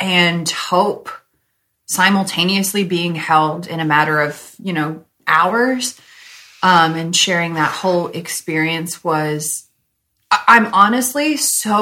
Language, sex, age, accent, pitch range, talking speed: English, female, 30-49, American, 160-195 Hz, 110 wpm